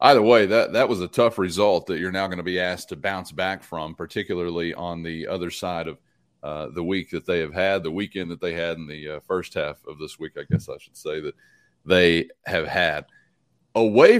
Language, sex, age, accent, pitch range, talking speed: English, male, 30-49, American, 85-110 Hz, 235 wpm